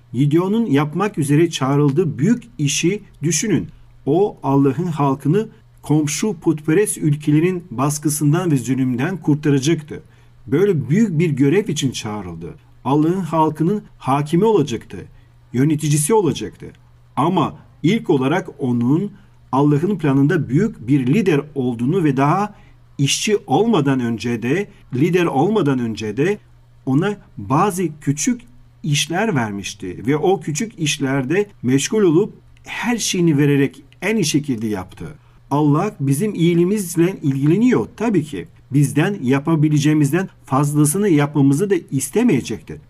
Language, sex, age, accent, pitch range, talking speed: Turkish, male, 40-59, native, 130-170 Hz, 110 wpm